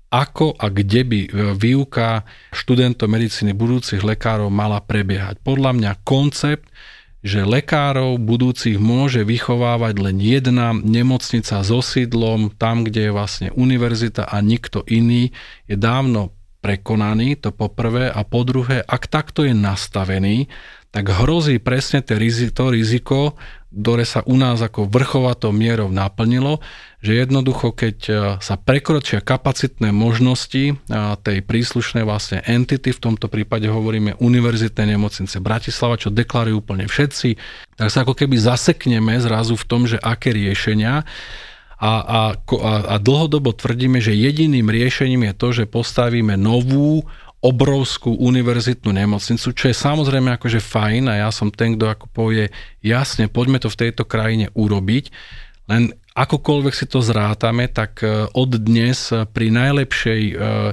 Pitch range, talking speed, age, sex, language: 110-125 Hz, 135 wpm, 40-59, male, Slovak